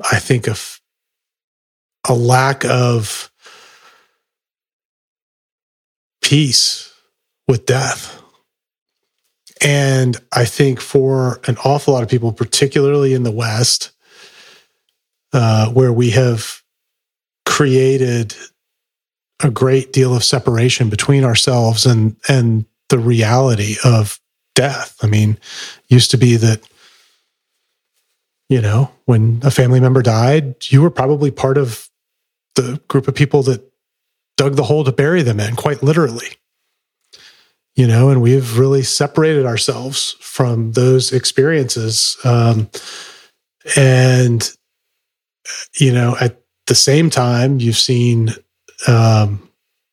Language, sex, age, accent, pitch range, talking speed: English, male, 30-49, American, 120-140 Hz, 115 wpm